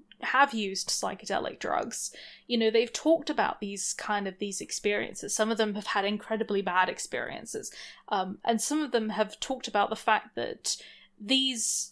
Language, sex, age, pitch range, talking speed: English, female, 20-39, 205-245 Hz, 170 wpm